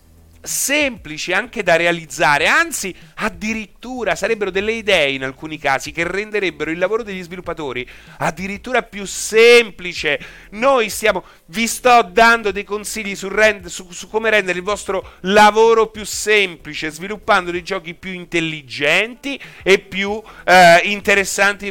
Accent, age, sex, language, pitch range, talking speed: native, 30-49, male, Italian, 135-205 Hz, 135 wpm